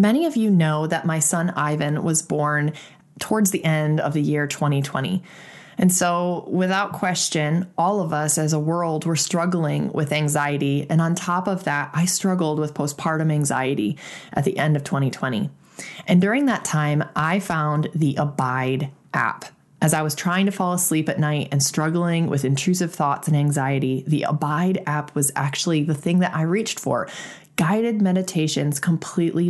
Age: 20-39